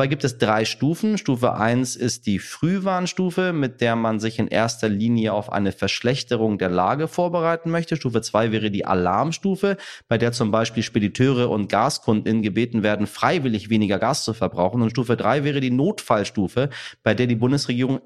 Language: German